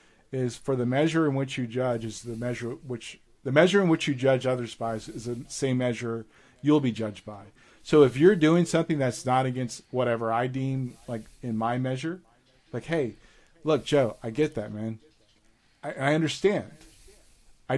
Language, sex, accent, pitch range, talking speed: English, male, American, 120-150 Hz, 185 wpm